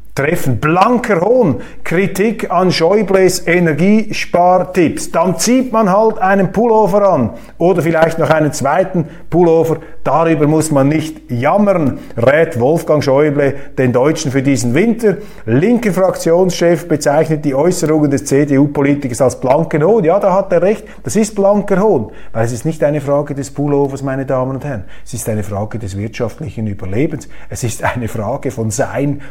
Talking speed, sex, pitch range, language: 160 wpm, male, 140-195 Hz, German